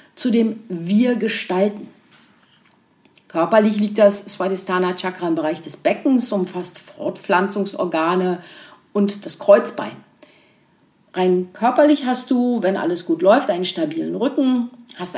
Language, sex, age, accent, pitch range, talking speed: German, female, 50-69, German, 195-280 Hz, 110 wpm